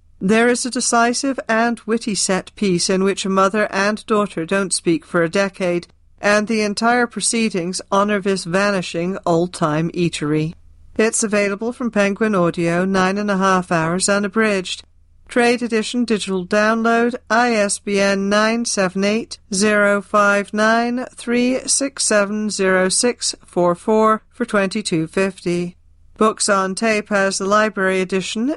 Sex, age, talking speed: female, 40-59, 120 wpm